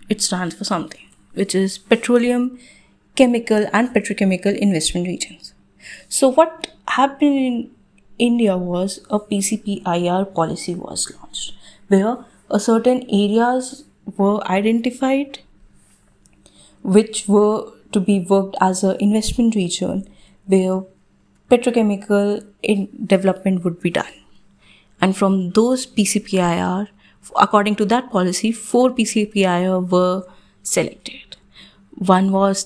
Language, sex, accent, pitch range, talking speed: English, female, Indian, 190-230 Hz, 110 wpm